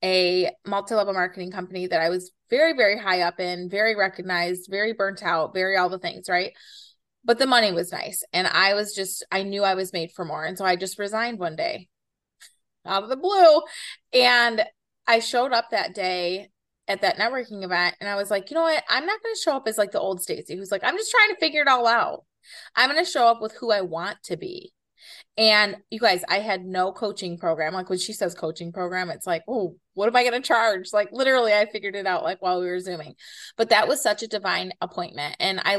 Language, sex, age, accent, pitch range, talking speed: English, female, 20-39, American, 185-235 Hz, 235 wpm